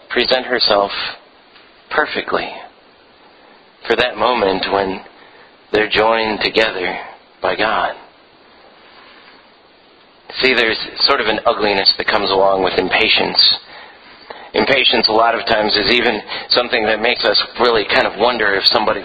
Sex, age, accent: male, 40-59, American